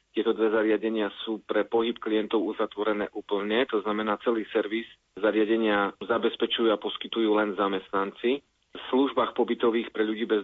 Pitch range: 105-110 Hz